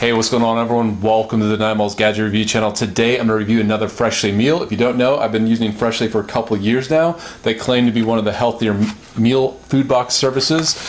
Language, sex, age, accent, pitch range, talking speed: English, male, 30-49, American, 110-130 Hz, 240 wpm